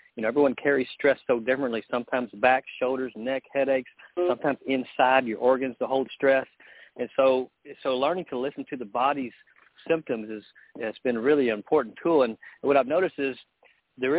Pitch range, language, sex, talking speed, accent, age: 125-150 Hz, English, male, 175 wpm, American, 50-69